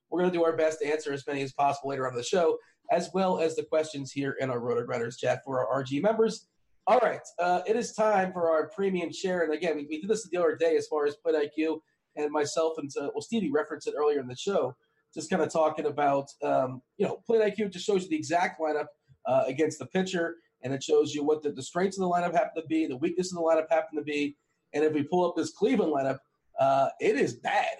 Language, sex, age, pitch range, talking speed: English, male, 40-59, 145-190 Hz, 265 wpm